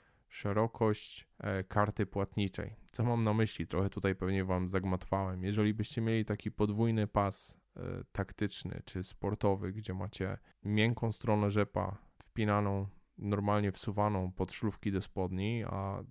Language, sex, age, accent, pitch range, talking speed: Polish, male, 10-29, native, 95-110 Hz, 125 wpm